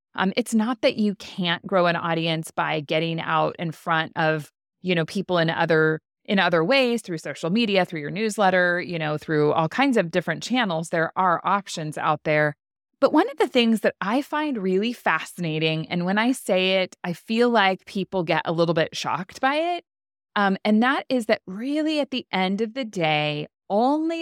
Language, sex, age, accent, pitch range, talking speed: English, female, 20-39, American, 160-210 Hz, 200 wpm